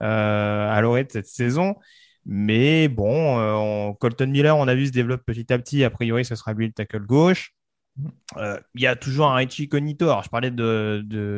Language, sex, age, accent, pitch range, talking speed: French, male, 20-39, French, 110-140 Hz, 200 wpm